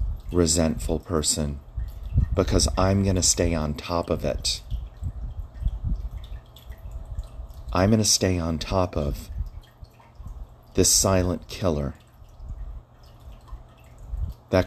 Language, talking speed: English, 90 wpm